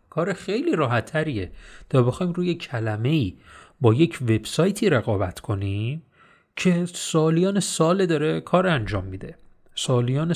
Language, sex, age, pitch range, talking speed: Persian, male, 30-49, 125-175 Hz, 120 wpm